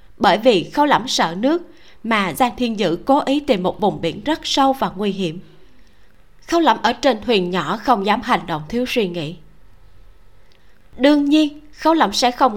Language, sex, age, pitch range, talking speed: Vietnamese, female, 20-39, 185-260 Hz, 190 wpm